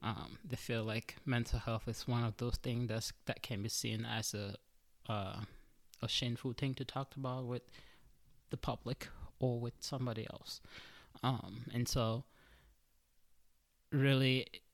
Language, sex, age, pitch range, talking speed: English, male, 20-39, 105-130 Hz, 145 wpm